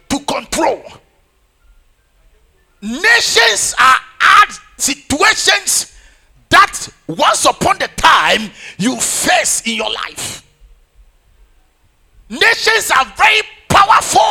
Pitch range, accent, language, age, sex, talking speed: 300-430 Hz, Nigerian, English, 50-69, male, 80 wpm